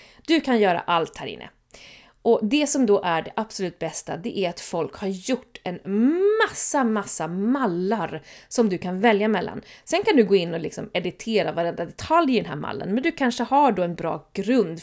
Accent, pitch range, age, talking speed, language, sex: native, 185-260 Hz, 30-49, 200 wpm, Swedish, female